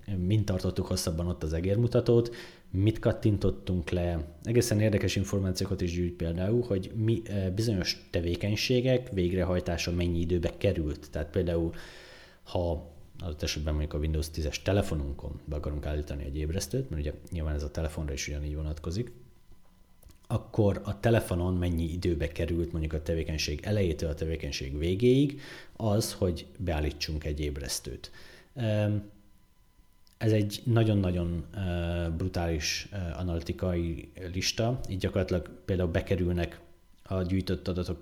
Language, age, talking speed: Hungarian, 30-49, 125 wpm